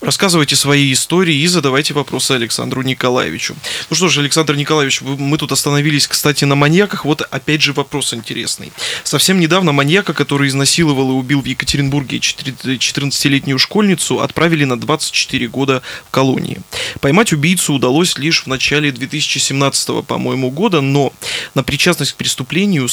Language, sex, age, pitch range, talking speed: Russian, male, 20-39, 130-155 Hz, 145 wpm